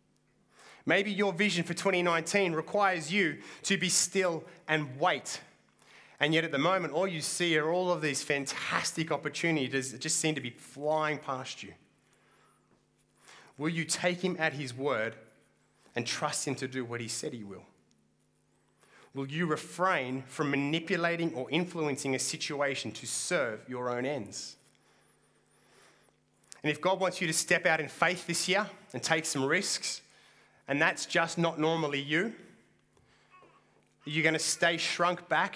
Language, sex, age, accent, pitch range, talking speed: English, male, 30-49, Australian, 135-170 Hz, 160 wpm